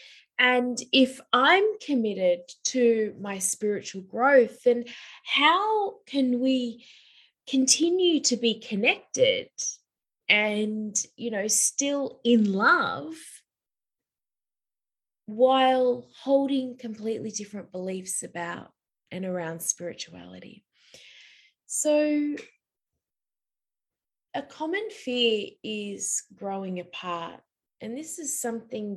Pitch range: 195-270 Hz